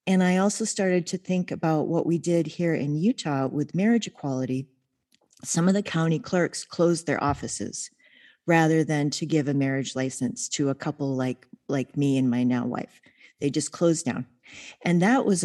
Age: 40-59